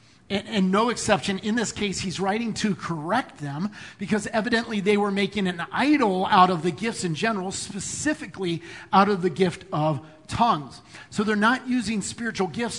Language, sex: English, male